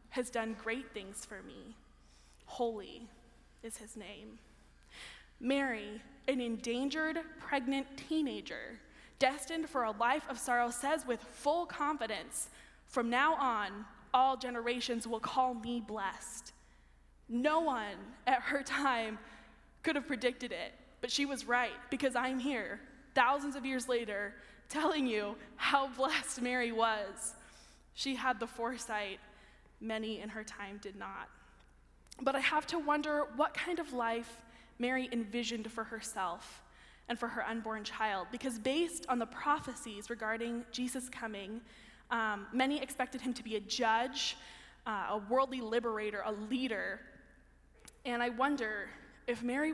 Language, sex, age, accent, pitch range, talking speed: English, female, 10-29, American, 220-265 Hz, 140 wpm